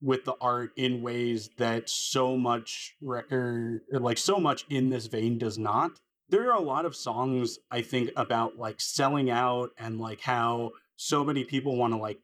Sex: male